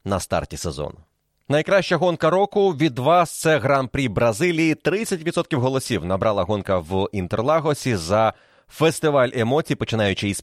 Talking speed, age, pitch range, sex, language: 130 wpm, 30-49, 100-145 Hz, male, Ukrainian